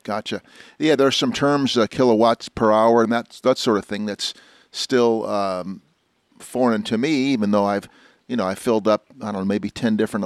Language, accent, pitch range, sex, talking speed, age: English, American, 105-115 Hz, male, 205 wpm, 50-69